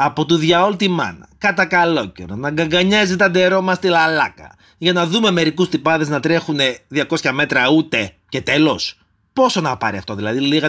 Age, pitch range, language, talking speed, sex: 30-49, 135-210 Hz, Greek, 180 wpm, male